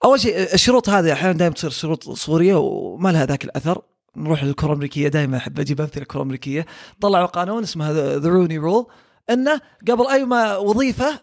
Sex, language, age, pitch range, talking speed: male, Arabic, 20-39, 155-245 Hz, 175 wpm